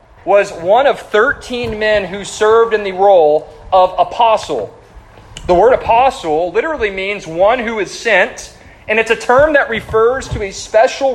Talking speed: 160 wpm